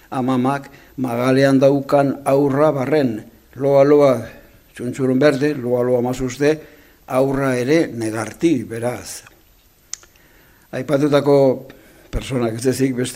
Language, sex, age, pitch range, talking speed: Spanish, male, 60-79, 115-140 Hz, 110 wpm